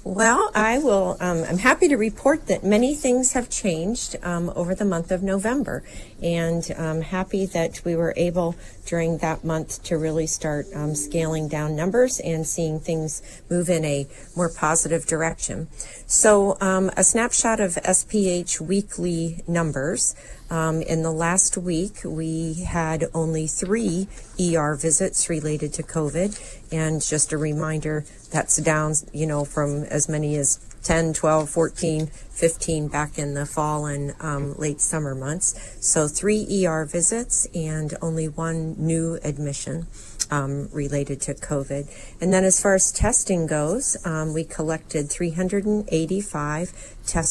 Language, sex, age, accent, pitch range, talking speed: English, female, 40-59, American, 150-175 Hz, 145 wpm